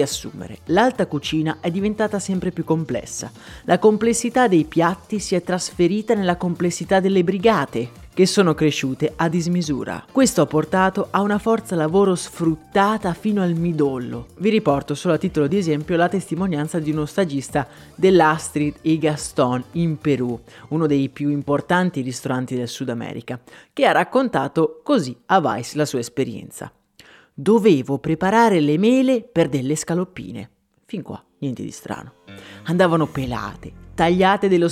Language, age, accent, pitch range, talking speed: Italian, 30-49, native, 150-190 Hz, 145 wpm